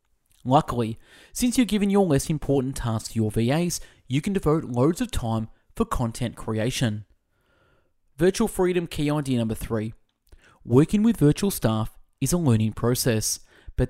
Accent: Australian